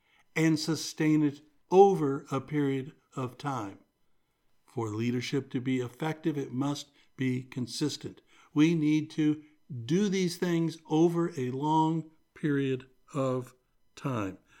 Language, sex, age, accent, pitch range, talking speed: English, male, 60-79, American, 130-170 Hz, 120 wpm